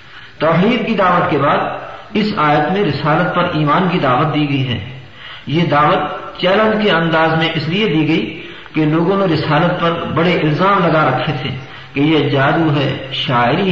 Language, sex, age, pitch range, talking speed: Urdu, male, 50-69, 150-195 Hz, 180 wpm